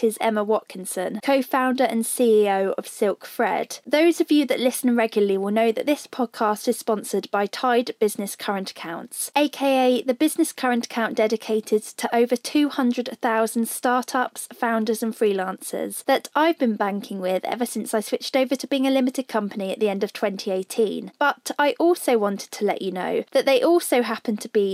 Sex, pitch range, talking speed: female, 215-270 Hz, 180 wpm